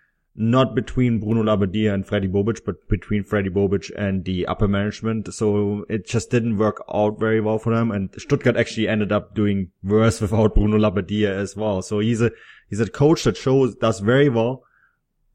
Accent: German